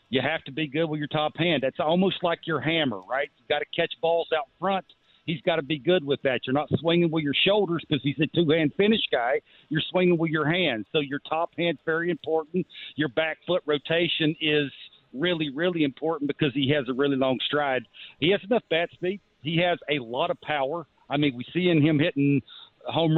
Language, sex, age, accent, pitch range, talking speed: English, male, 50-69, American, 150-175 Hz, 225 wpm